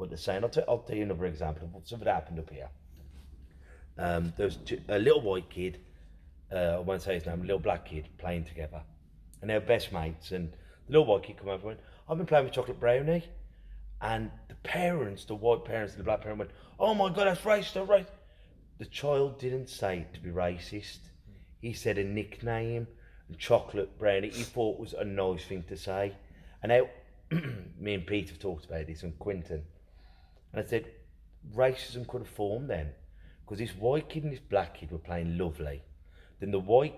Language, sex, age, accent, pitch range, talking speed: English, male, 30-49, British, 85-120 Hz, 210 wpm